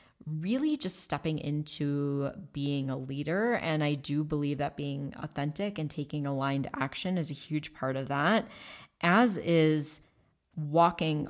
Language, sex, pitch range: English, female, 140-165 Hz